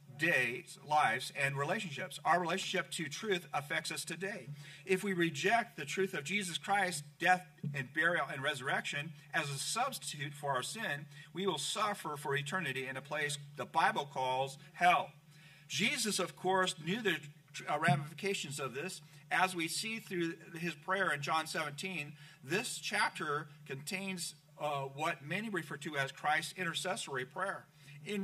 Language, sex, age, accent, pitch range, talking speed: English, male, 50-69, American, 150-190 Hz, 155 wpm